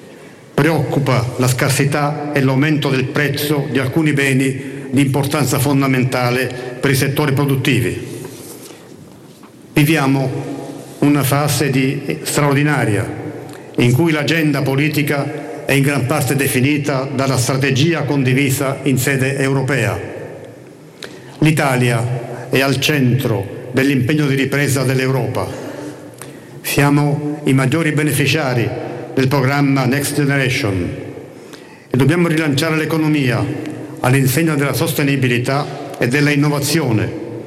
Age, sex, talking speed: 50-69, male, 100 wpm